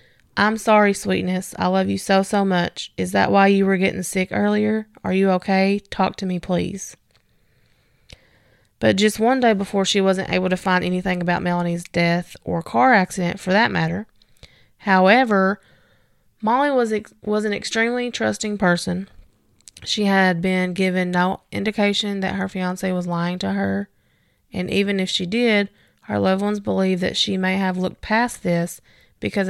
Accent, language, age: American, English, 20-39